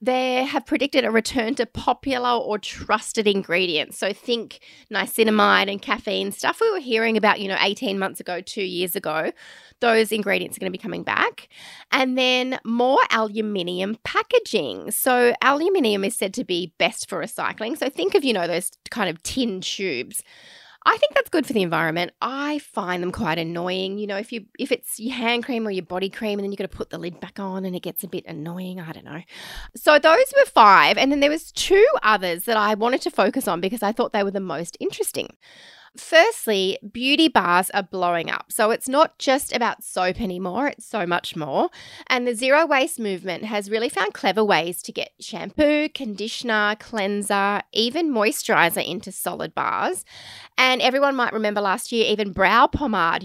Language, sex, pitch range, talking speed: English, female, 190-260 Hz, 195 wpm